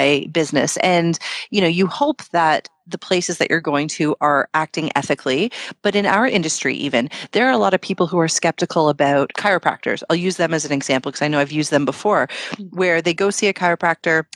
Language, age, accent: English, 30-49, American